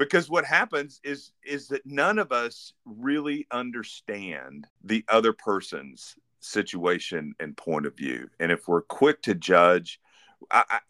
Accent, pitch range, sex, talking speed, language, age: American, 95-125 Hz, male, 145 wpm, English, 40-59